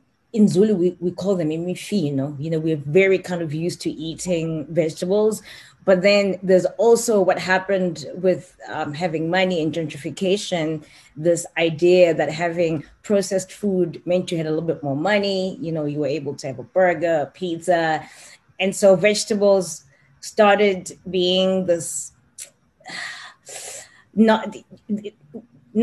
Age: 20-39